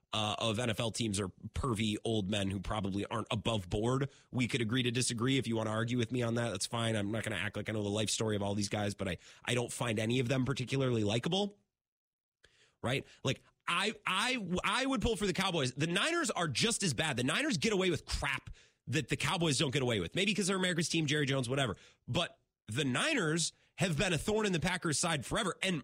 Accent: American